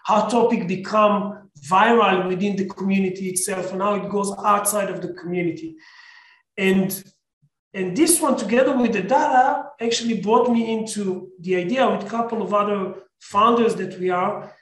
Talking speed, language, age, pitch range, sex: 160 wpm, English, 40-59, 185-215 Hz, male